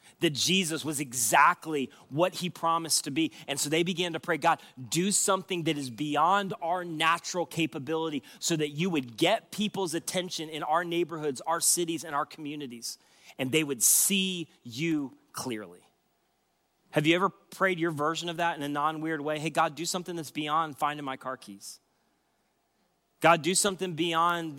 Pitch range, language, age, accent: 145-180 Hz, English, 30-49, American